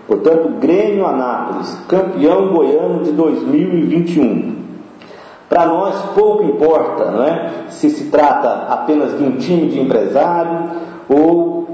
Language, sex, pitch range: Portuguese, male, 135-170 Hz